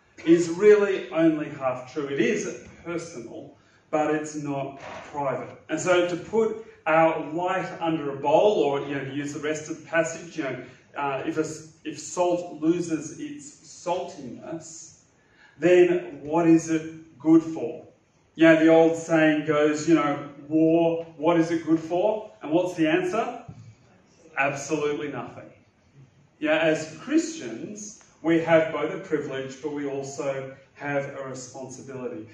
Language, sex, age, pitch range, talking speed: English, male, 30-49, 145-175 Hz, 150 wpm